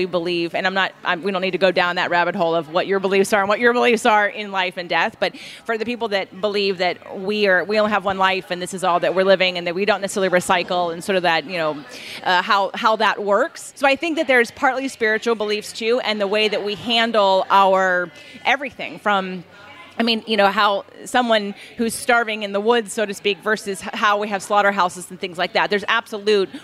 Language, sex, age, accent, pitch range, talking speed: English, female, 30-49, American, 185-225 Hz, 250 wpm